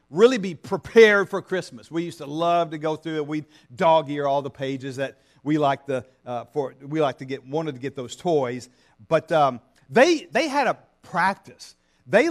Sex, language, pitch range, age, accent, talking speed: male, English, 140-200 Hz, 50-69, American, 190 wpm